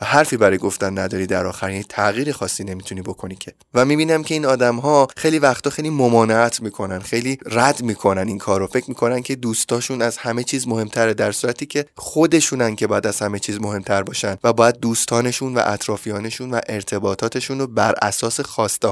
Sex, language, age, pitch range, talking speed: male, Persian, 20-39, 110-135 Hz, 185 wpm